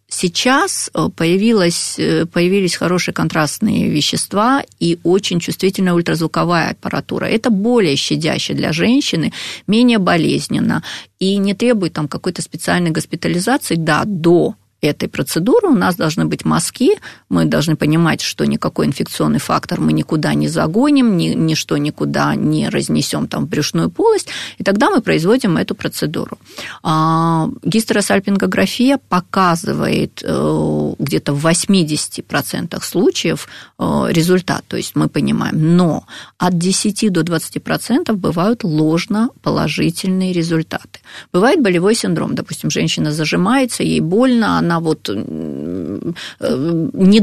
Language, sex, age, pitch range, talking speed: Russian, female, 30-49, 160-220 Hz, 120 wpm